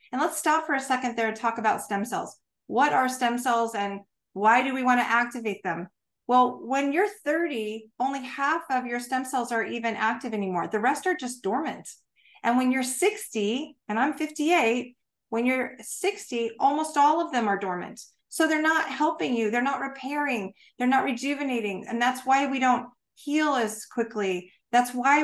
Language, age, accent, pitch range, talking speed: English, 40-59, American, 220-270 Hz, 190 wpm